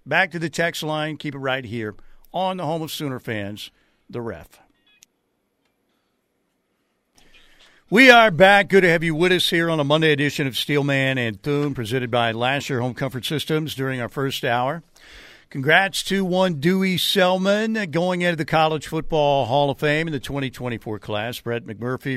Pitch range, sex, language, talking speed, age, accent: 130-160 Hz, male, English, 175 wpm, 50-69, American